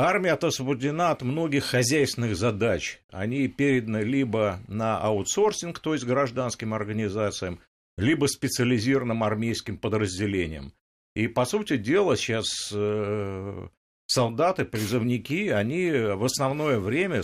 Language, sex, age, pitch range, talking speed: Russian, male, 50-69, 105-140 Hz, 105 wpm